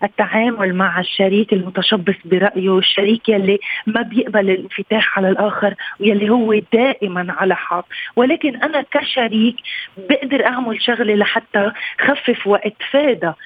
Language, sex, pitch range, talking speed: Arabic, female, 200-240 Hz, 115 wpm